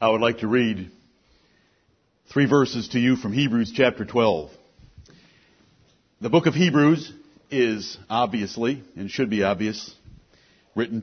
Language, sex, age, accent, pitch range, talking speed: English, male, 60-79, American, 120-145 Hz, 130 wpm